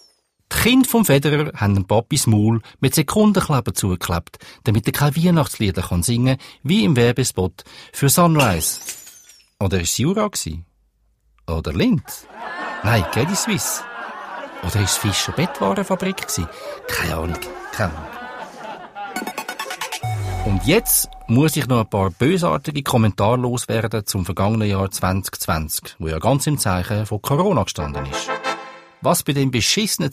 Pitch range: 95-140 Hz